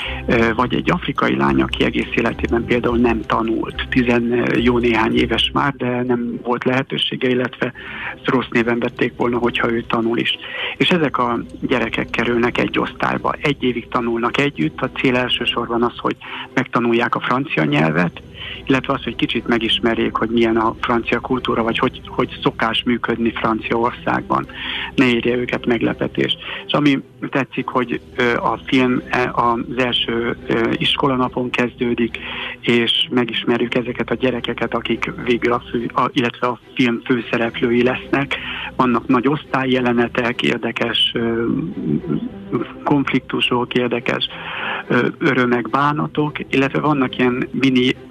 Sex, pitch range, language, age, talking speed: male, 115-130 Hz, Hungarian, 60-79, 130 wpm